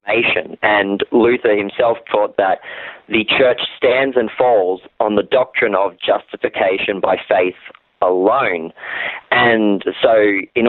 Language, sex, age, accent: English, male, 30-49, Australian